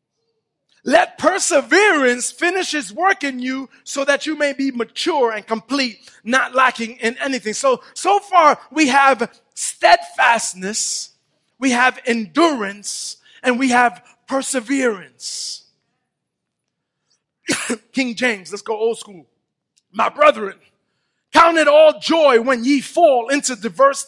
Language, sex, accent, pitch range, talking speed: English, male, American, 225-300 Hz, 120 wpm